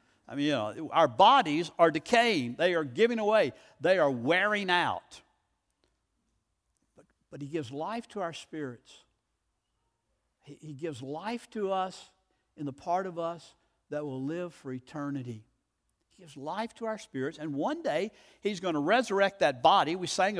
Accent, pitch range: American, 145-205 Hz